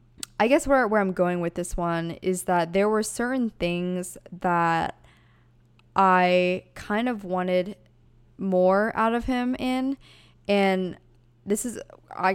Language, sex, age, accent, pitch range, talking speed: English, female, 20-39, American, 170-210 Hz, 140 wpm